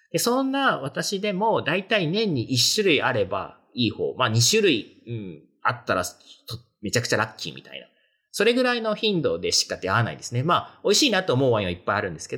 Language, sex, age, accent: Japanese, male, 40-59, native